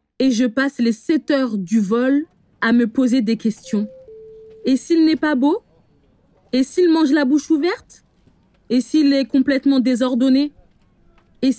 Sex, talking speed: female, 155 wpm